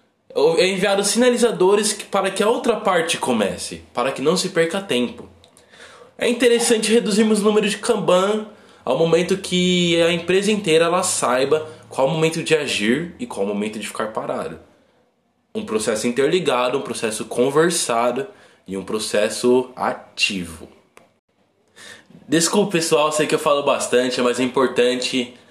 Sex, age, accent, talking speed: male, 20-39, Brazilian, 145 wpm